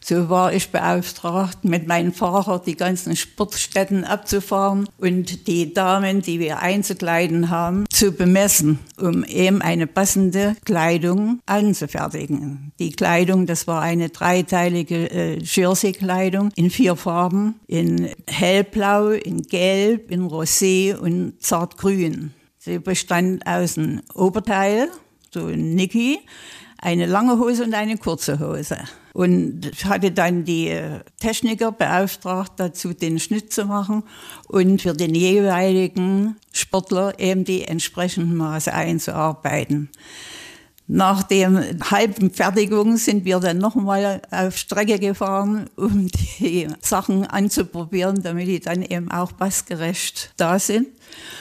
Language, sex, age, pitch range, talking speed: German, female, 60-79, 170-200 Hz, 120 wpm